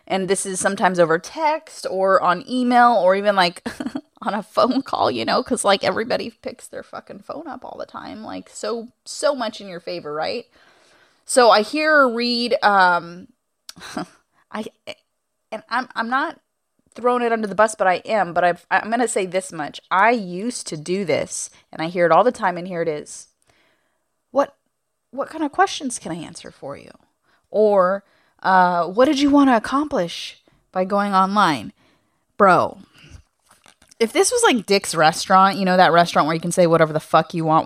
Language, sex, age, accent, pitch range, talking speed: English, female, 20-39, American, 180-280 Hz, 195 wpm